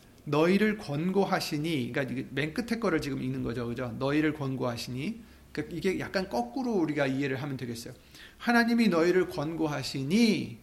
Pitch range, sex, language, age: 125-190 Hz, male, Korean, 30-49